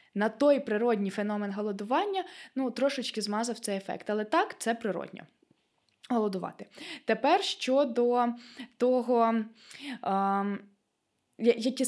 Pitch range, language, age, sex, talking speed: 215-280 Hz, Ukrainian, 20-39, female, 105 wpm